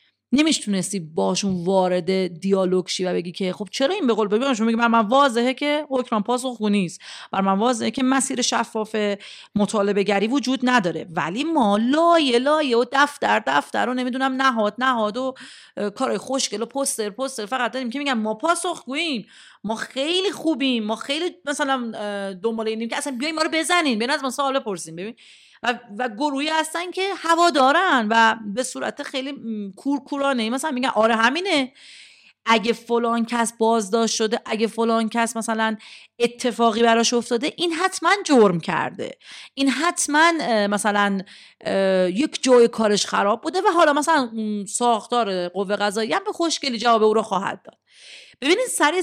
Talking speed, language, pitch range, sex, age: 155 wpm, Persian, 210-280 Hz, female, 40-59